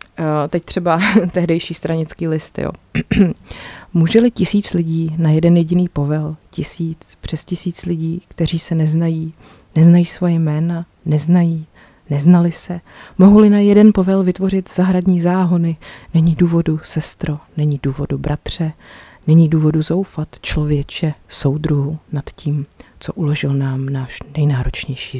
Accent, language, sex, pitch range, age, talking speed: native, Czech, female, 155-180 Hz, 30-49, 125 wpm